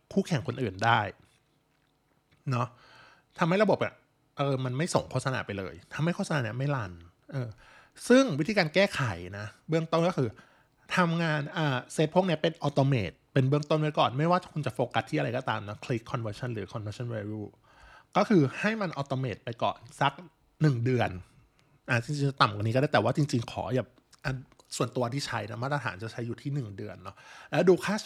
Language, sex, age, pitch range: Thai, male, 20-39, 115-155 Hz